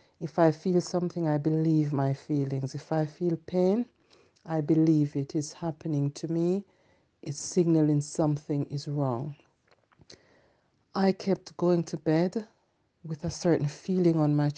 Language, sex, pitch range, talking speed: English, female, 150-175 Hz, 145 wpm